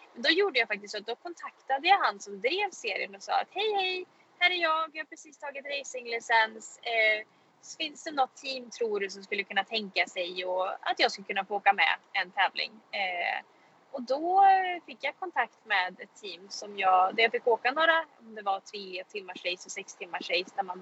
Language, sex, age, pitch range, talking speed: Swedish, female, 20-39, 205-290 Hz, 210 wpm